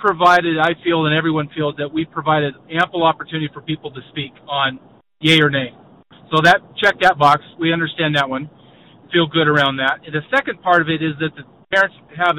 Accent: American